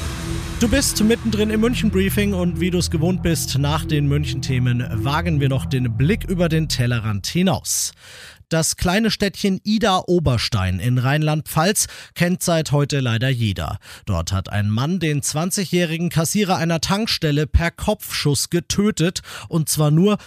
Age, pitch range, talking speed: 40-59, 140-175 Hz, 145 wpm